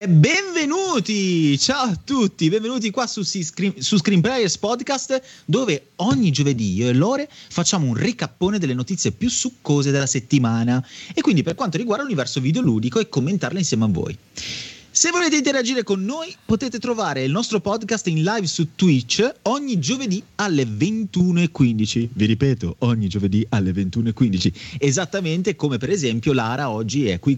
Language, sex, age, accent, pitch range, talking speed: Italian, male, 30-49, native, 130-210 Hz, 155 wpm